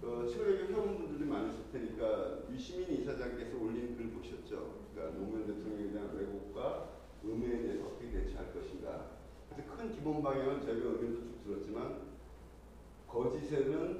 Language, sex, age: Korean, male, 40-59